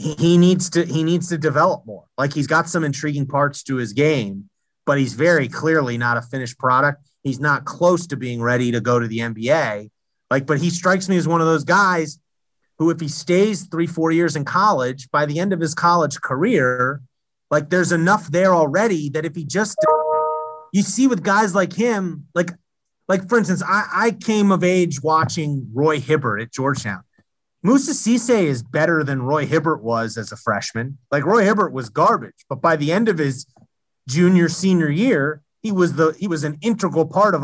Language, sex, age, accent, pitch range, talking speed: English, male, 30-49, American, 140-180 Hz, 205 wpm